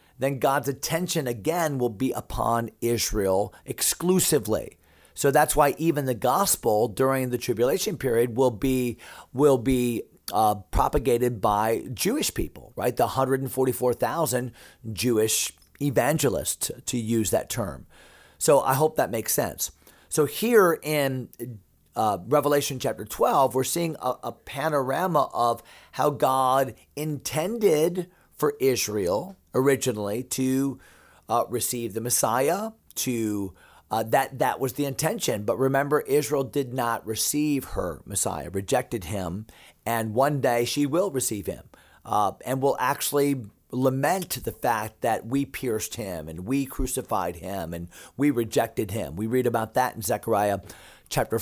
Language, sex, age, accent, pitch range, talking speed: English, male, 40-59, American, 115-140 Hz, 135 wpm